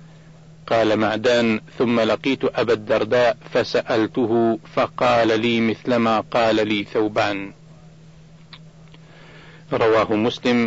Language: Arabic